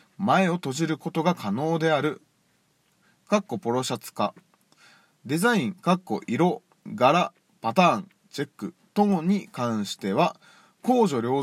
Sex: male